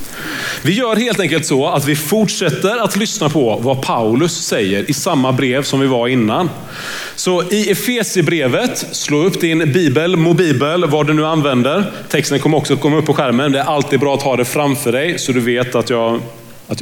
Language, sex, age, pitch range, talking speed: Swedish, male, 30-49, 135-185 Hz, 200 wpm